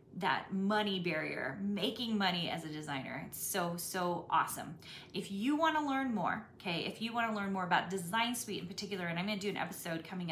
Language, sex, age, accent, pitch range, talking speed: English, female, 30-49, American, 175-230 Hz, 220 wpm